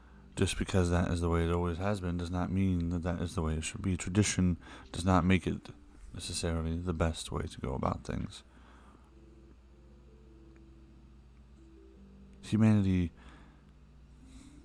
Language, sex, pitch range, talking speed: English, male, 65-85 Hz, 145 wpm